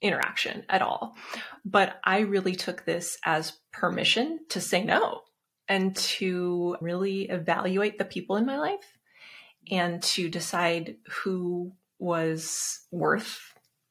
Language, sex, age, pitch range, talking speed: English, female, 20-39, 175-225 Hz, 120 wpm